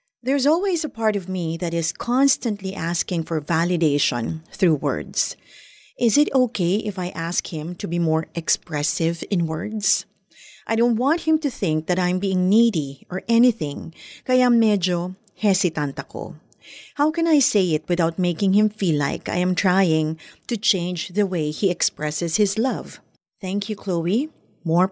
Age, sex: 30-49, female